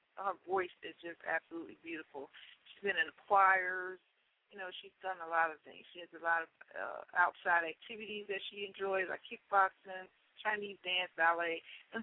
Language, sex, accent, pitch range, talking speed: English, female, American, 170-205 Hz, 175 wpm